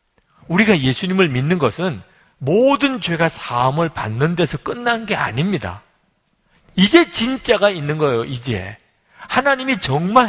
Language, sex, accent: Korean, male, native